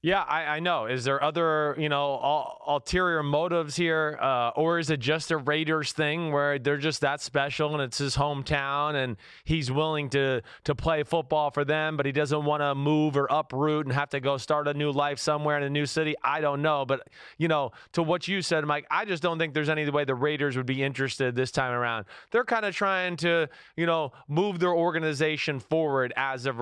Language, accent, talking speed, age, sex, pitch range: English, American, 225 wpm, 20-39, male, 140-165 Hz